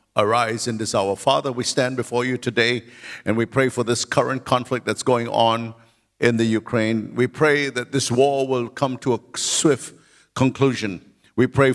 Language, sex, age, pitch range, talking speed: English, male, 50-69, 120-140 Hz, 185 wpm